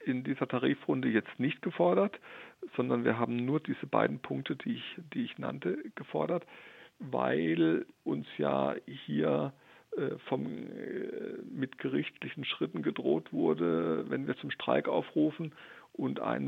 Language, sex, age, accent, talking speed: German, male, 40-59, German, 125 wpm